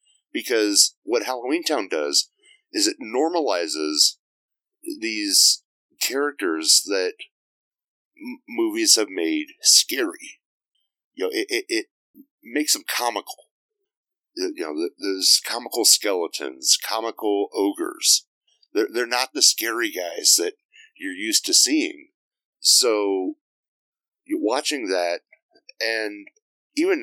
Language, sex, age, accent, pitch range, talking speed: English, male, 40-59, American, 310-415 Hz, 105 wpm